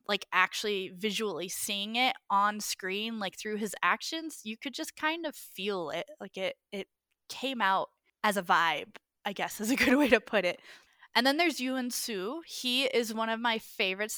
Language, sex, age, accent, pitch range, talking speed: English, female, 10-29, American, 195-235 Hz, 195 wpm